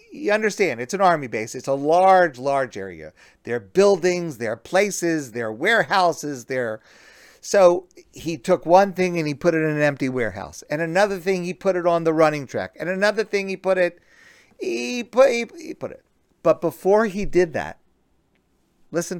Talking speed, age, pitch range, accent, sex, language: 185 wpm, 50-69, 135-190 Hz, American, male, English